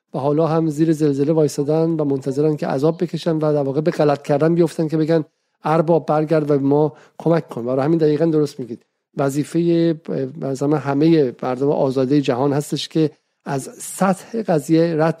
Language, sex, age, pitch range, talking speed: Persian, male, 50-69, 145-165 Hz, 165 wpm